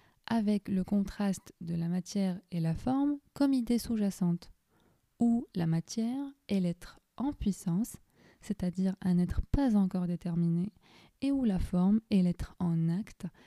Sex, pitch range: female, 175-215 Hz